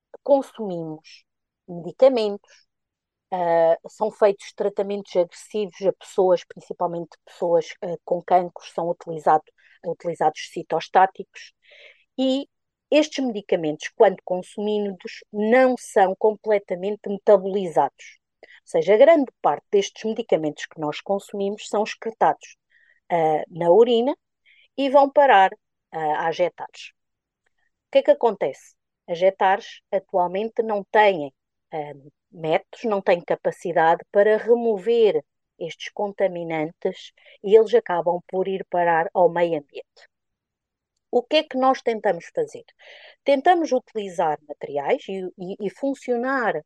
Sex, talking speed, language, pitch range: female, 115 wpm, English, 175-245 Hz